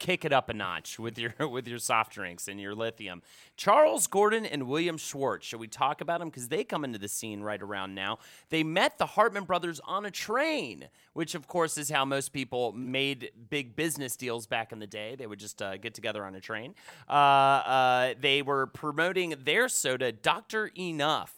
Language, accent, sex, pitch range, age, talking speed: English, American, male, 115-165 Hz, 30-49, 210 wpm